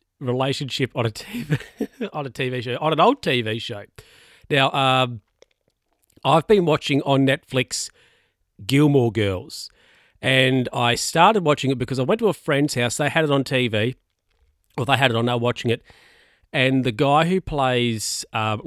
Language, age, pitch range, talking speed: English, 40-59, 115-145 Hz, 175 wpm